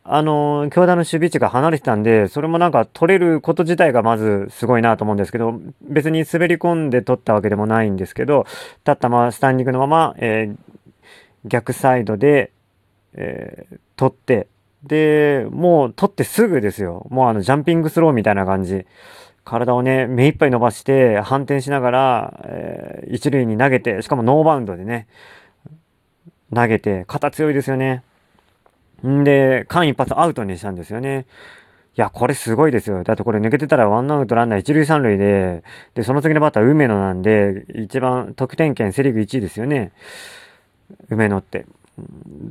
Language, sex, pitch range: Japanese, male, 110-150 Hz